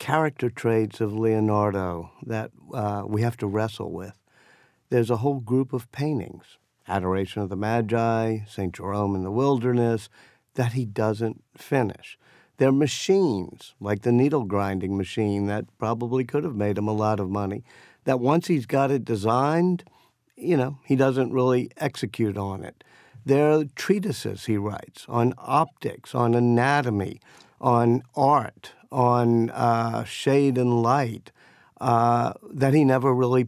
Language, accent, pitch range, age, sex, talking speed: English, American, 110-140 Hz, 50-69, male, 145 wpm